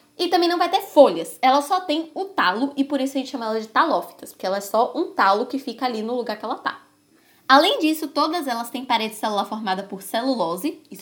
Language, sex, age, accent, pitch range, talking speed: Portuguese, female, 10-29, Brazilian, 220-290 Hz, 245 wpm